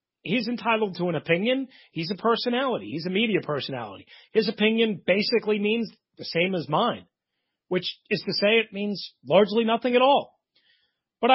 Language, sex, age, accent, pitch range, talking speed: English, male, 40-59, American, 175-240 Hz, 165 wpm